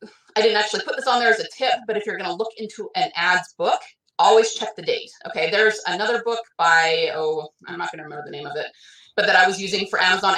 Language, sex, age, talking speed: English, female, 30-49, 265 wpm